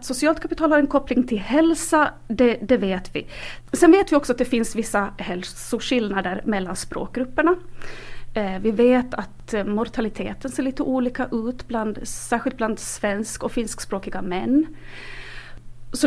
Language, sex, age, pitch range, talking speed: Swedish, female, 30-49, 200-275 Hz, 150 wpm